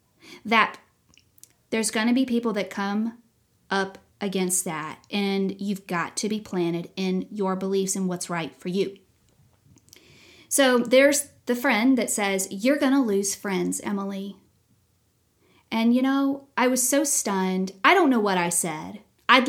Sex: female